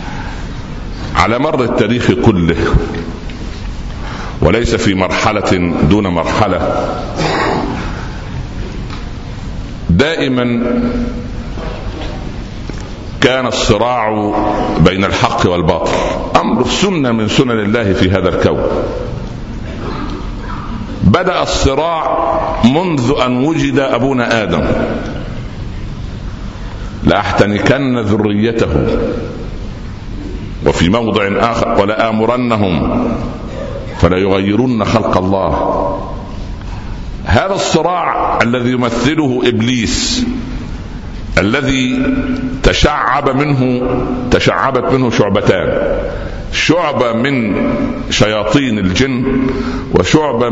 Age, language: 60-79, Arabic